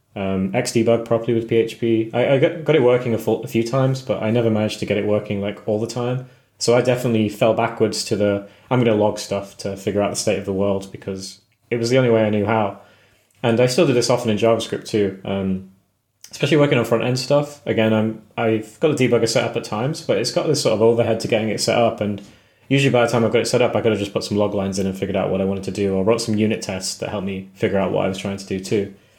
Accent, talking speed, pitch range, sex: British, 280 wpm, 100-115 Hz, male